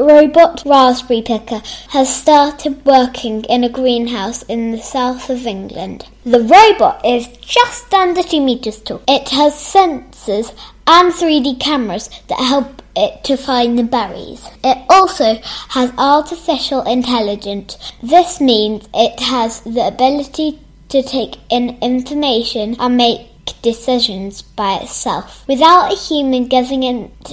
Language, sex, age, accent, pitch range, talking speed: English, female, 10-29, British, 235-295 Hz, 130 wpm